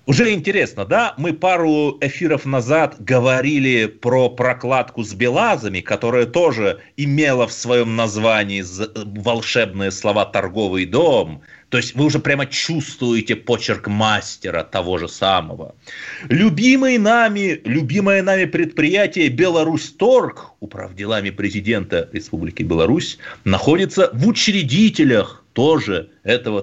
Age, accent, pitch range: 30-49, native, 115-180 Hz